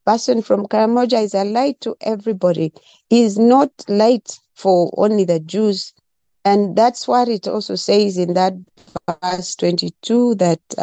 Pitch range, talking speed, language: 185-230 Hz, 150 wpm, English